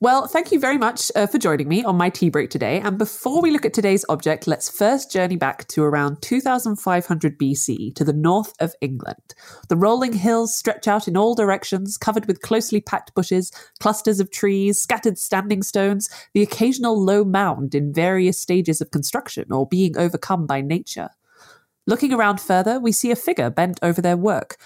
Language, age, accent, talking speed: English, 20-39, British, 190 wpm